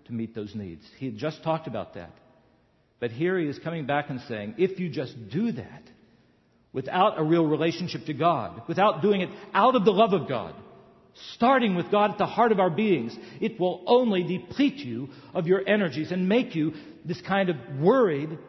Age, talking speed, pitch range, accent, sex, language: 50-69, 200 wpm, 115-160 Hz, American, male, English